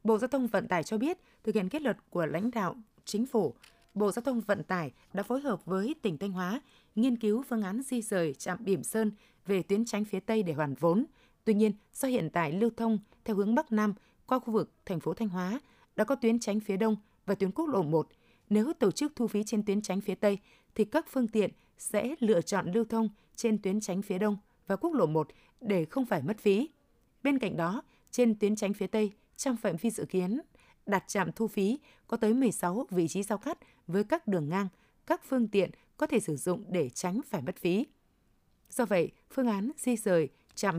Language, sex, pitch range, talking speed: Vietnamese, female, 185-230 Hz, 225 wpm